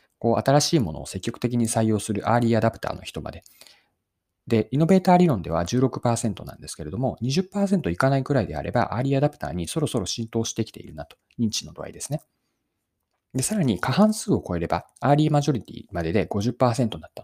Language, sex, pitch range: Japanese, male, 95-145 Hz